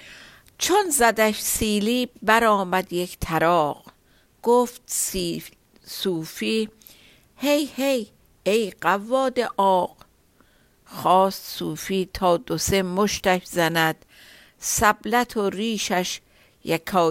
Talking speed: 90 wpm